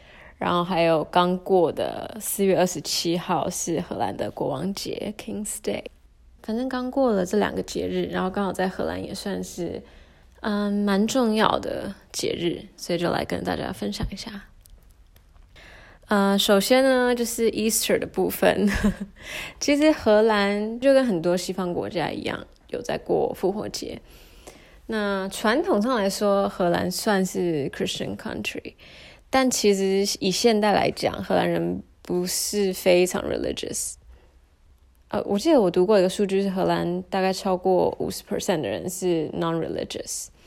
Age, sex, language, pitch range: 20-39, female, Chinese, 175-210 Hz